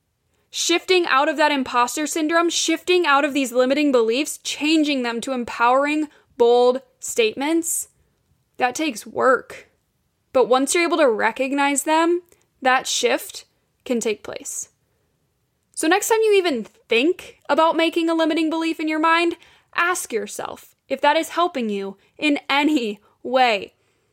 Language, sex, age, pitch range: English, female, 10-29, 245-320 Hz